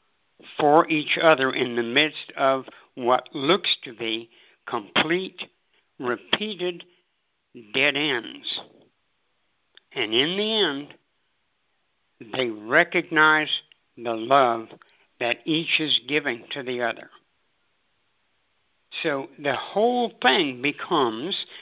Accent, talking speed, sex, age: American, 95 wpm, male, 60-79